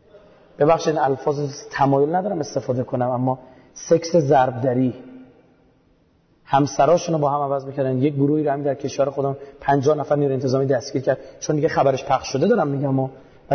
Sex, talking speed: male, 160 wpm